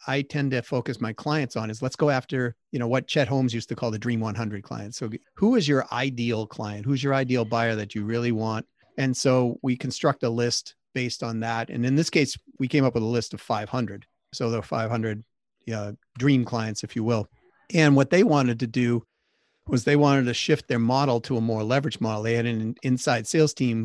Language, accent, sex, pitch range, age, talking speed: English, American, male, 115-135 Hz, 40-59, 225 wpm